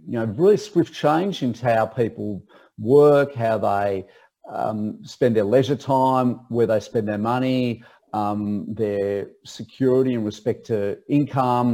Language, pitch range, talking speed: English, 105-130 Hz, 145 wpm